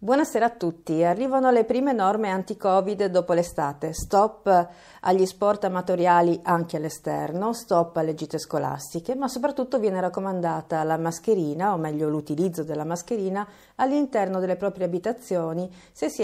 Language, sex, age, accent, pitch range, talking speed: Italian, female, 50-69, native, 165-210 Hz, 135 wpm